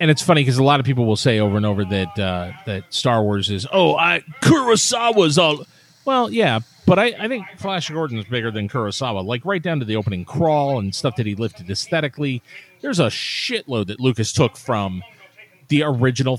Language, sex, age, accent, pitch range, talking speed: English, male, 40-59, American, 120-170 Hz, 210 wpm